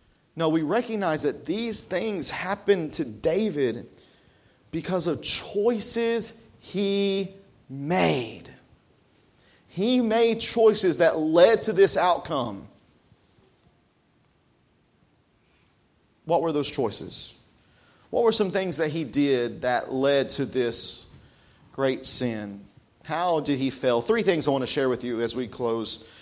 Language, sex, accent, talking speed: English, male, American, 125 wpm